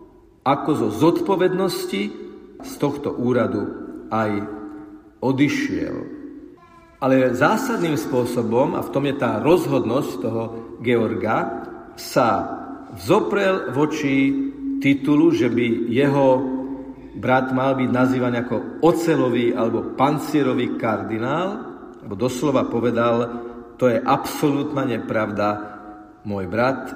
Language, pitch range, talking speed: Slovak, 120-155 Hz, 100 wpm